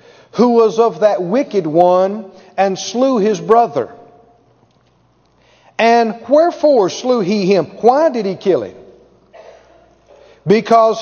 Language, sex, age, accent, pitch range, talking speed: English, male, 50-69, American, 210-270 Hz, 115 wpm